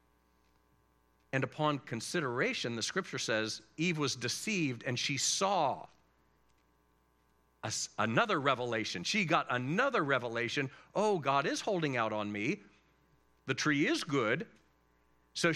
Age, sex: 50-69, male